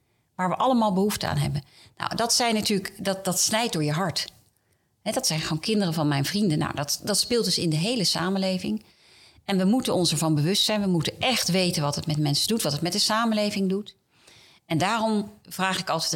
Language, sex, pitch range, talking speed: Dutch, female, 155-215 Hz, 225 wpm